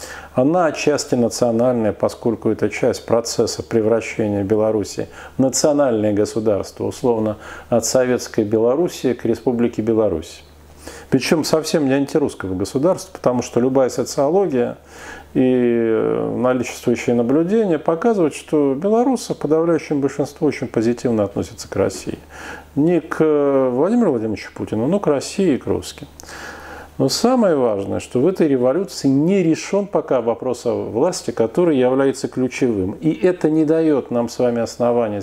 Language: Russian